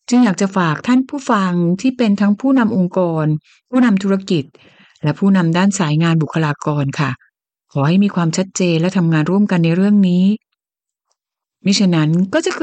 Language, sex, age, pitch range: Thai, female, 60-79, 165-225 Hz